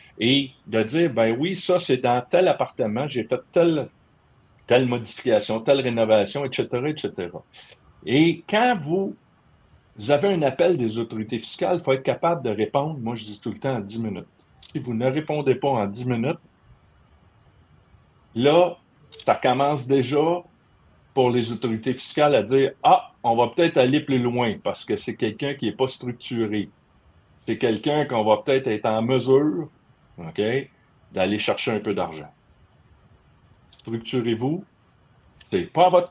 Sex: male